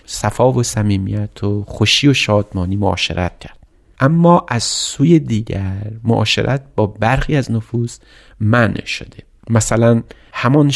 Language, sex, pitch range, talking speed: Persian, male, 95-115 Hz, 125 wpm